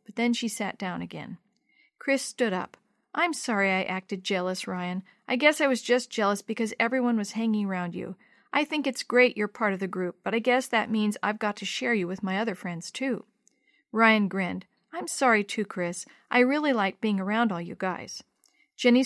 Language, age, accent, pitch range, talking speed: English, 50-69, American, 195-255 Hz, 205 wpm